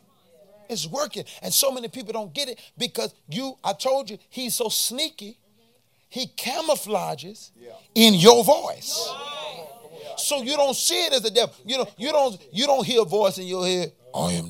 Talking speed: 180 wpm